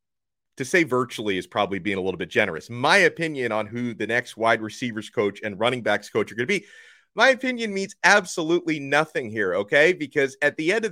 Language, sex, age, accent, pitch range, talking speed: English, male, 30-49, American, 120-170 Hz, 215 wpm